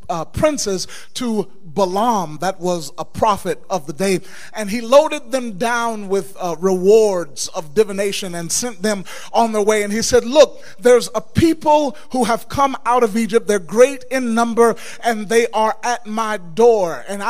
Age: 30-49